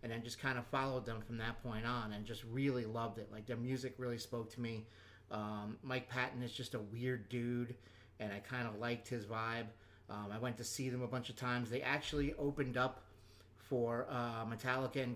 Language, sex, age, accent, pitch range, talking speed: English, male, 30-49, American, 115-130 Hz, 220 wpm